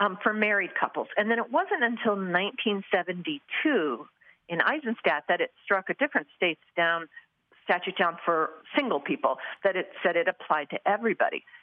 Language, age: English, 50-69